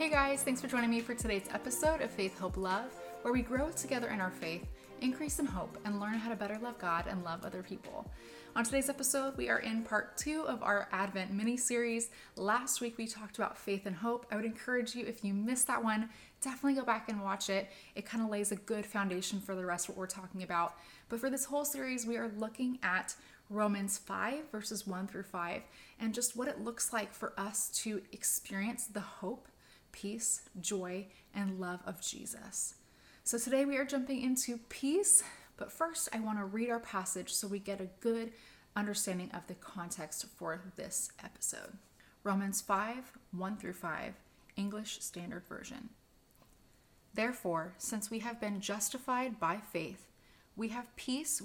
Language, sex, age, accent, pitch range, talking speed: English, female, 20-39, American, 195-240 Hz, 190 wpm